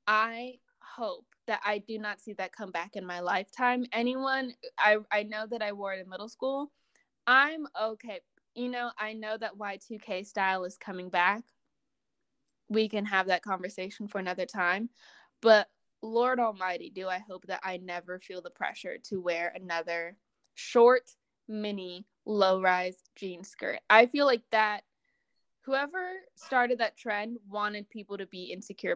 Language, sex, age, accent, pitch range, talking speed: English, female, 10-29, American, 195-255 Hz, 160 wpm